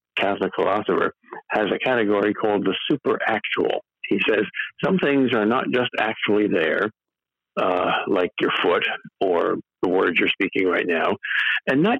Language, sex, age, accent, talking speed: English, male, 60-79, American, 155 wpm